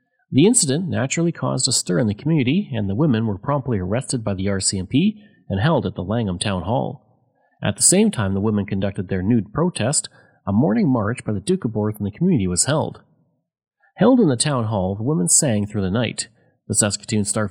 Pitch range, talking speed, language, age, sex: 105-145 Hz, 215 wpm, English, 30-49, male